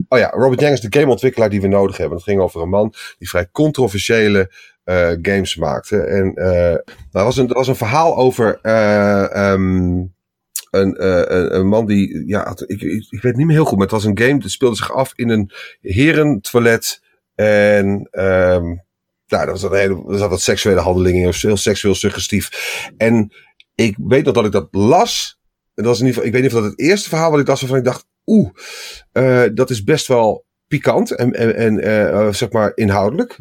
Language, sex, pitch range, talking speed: Dutch, male, 100-125 Hz, 205 wpm